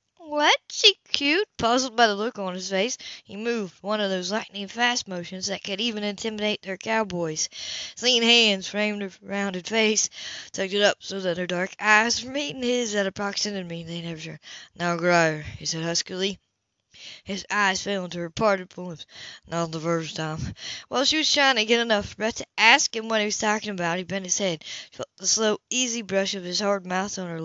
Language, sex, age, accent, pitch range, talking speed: English, female, 20-39, American, 175-225 Hz, 205 wpm